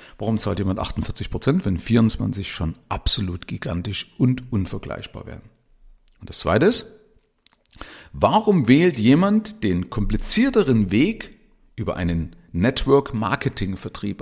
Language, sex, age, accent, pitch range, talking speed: German, male, 40-59, German, 105-150 Hz, 105 wpm